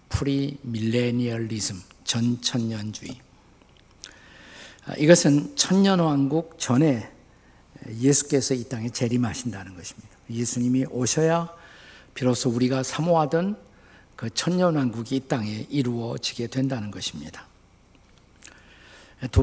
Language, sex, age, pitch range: Korean, male, 50-69, 110-145 Hz